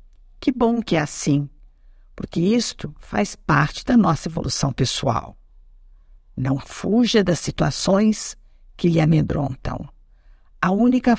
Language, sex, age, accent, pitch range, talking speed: Portuguese, female, 50-69, Brazilian, 145-200 Hz, 120 wpm